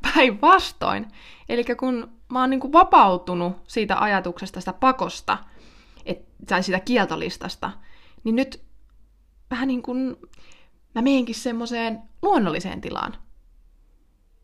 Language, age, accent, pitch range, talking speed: Finnish, 20-39, native, 195-270 Hz, 95 wpm